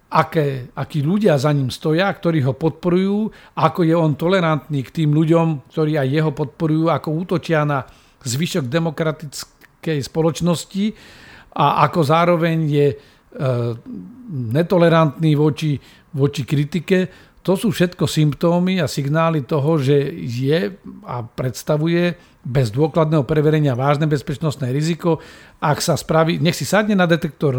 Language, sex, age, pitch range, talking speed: Slovak, male, 50-69, 140-170 Hz, 130 wpm